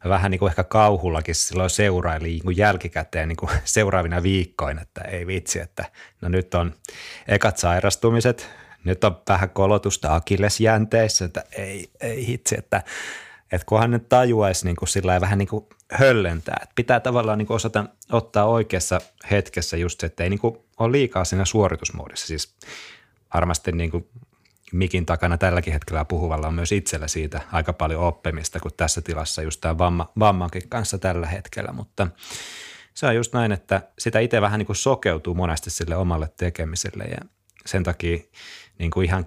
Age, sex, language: 30-49, male, Finnish